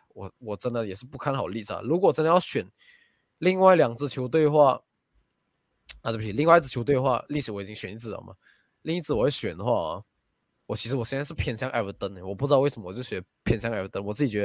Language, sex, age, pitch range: Chinese, male, 20-39, 110-145 Hz